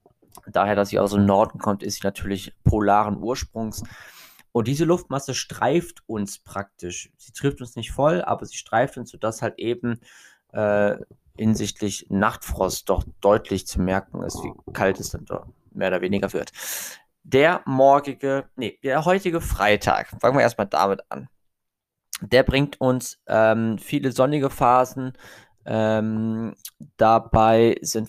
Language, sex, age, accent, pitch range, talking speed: German, male, 20-39, German, 105-125 Hz, 140 wpm